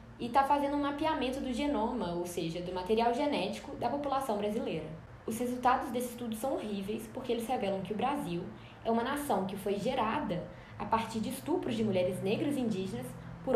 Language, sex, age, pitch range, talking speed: Portuguese, female, 10-29, 200-260 Hz, 190 wpm